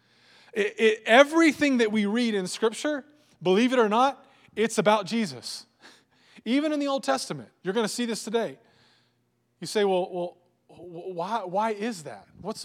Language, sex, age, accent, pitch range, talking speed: English, male, 20-39, American, 120-180 Hz, 165 wpm